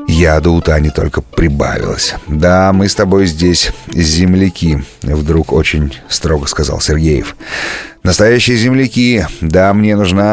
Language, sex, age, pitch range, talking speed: Russian, male, 30-49, 80-90 Hz, 130 wpm